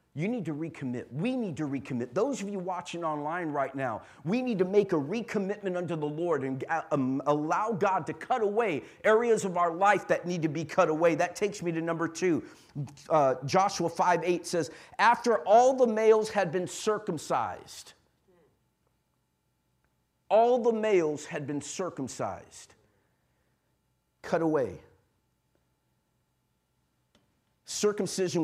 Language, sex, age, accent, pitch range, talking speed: English, male, 50-69, American, 140-205 Hz, 140 wpm